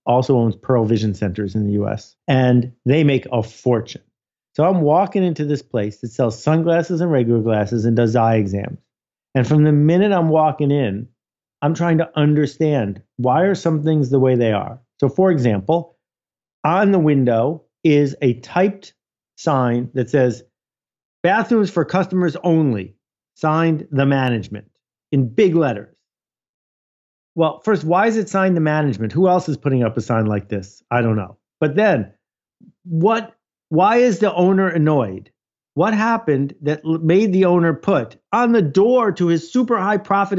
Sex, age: male, 50-69